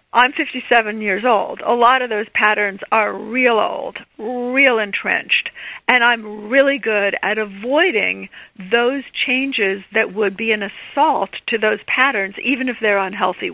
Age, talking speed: 50-69, 170 wpm